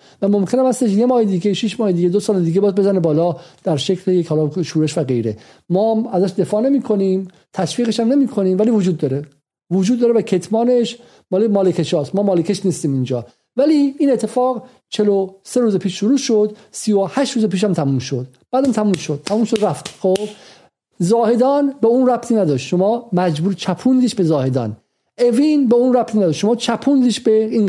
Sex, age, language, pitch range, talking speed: male, 50-69, Persian, 180-235 Hz, 175 wpm